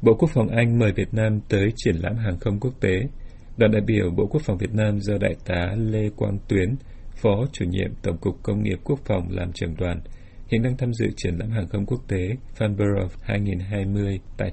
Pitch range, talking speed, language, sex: 95-115 Hz, 220 wpm, Vietnamese, male